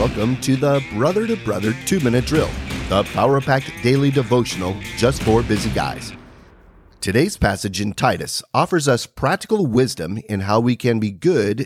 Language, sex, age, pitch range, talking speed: English, male, 40-59, 110-160 Hz, 165 wpm